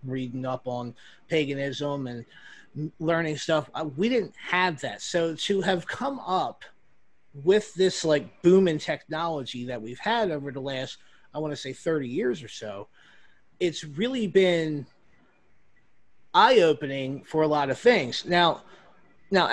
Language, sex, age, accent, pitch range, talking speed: English, male, 30-49, American, 150-200 Hz, 145 wpm